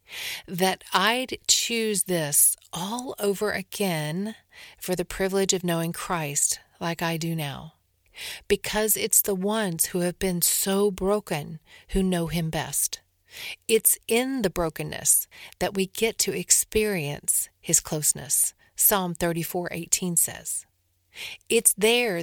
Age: 40-59